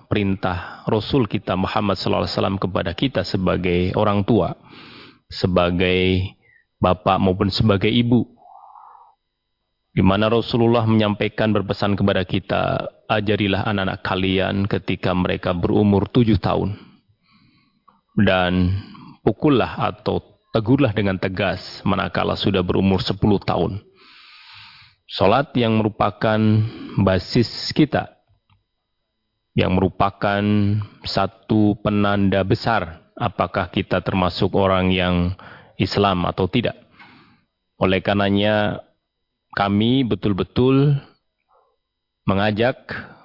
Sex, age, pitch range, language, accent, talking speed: male, 30-49, 95-110 Hz, Indonesian, native, 90 wpm